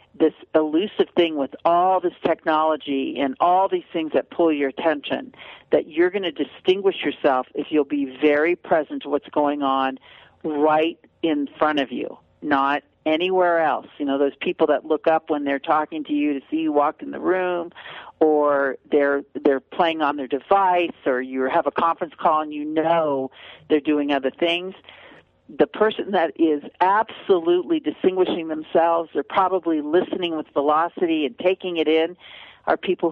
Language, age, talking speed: English, 50-69, 170 wpm